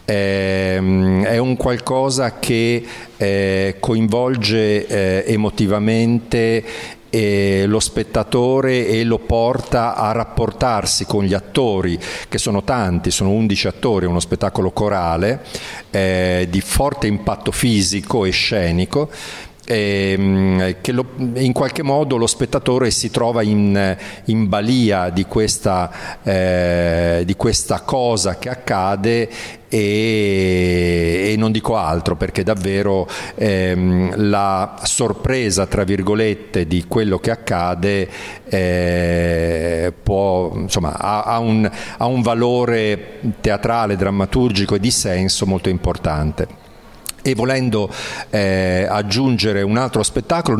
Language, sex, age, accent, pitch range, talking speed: Italian, male, 50-69, native, 95-115 Hz, 105 wpm